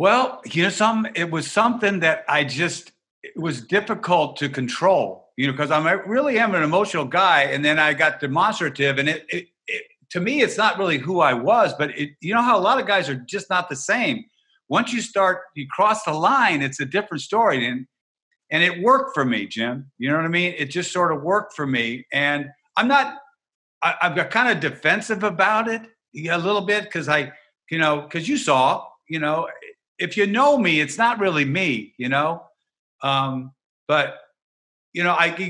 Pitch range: 140-210 Hz